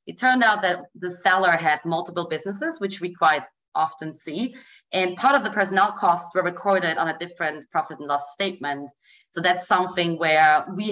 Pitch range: 155-185 Hz